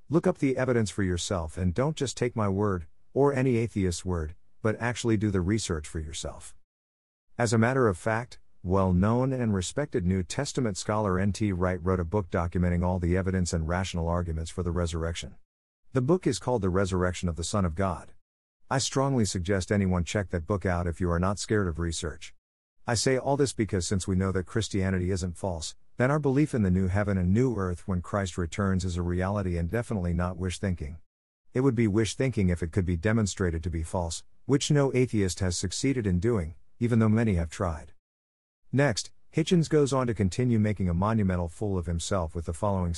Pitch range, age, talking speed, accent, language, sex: 90-115 Hz, 50-69, 205 wpm, American, English, male